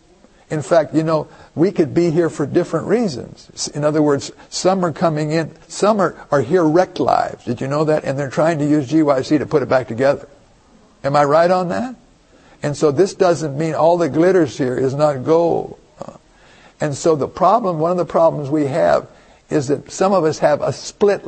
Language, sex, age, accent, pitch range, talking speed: English, male, 60-79, American, 140-175 Hz, 210 wpm